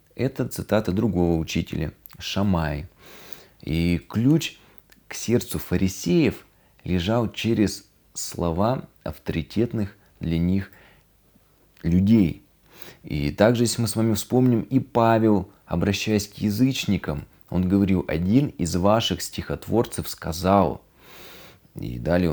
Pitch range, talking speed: 85-105 Hz, 100 wpm